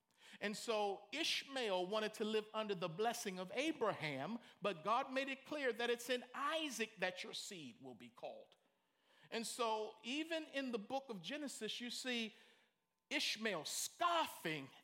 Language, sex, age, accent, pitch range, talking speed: English, male, 50-69, American, 195-260 Hz, 155 wpm